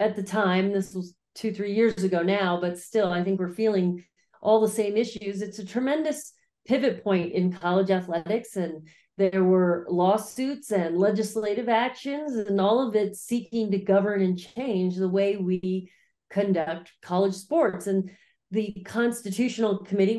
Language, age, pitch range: English, 40-59, 190-225 Hz